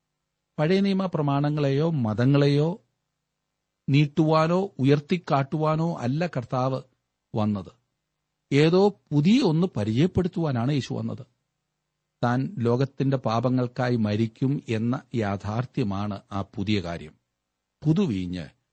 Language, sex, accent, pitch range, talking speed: Malayalam, male, native, 115-160 Hz, 75 wpm